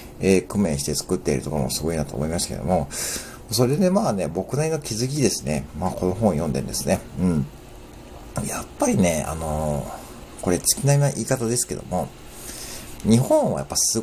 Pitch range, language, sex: 80-110 Hz, Japanese, male